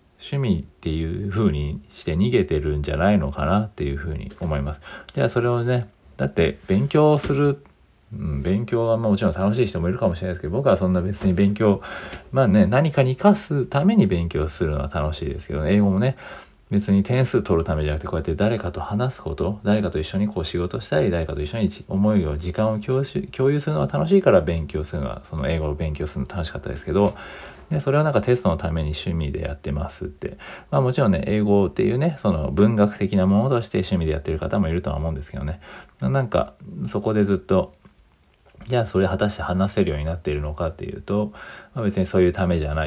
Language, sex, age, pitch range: Japanese, male, 40-59, 80-110 Hz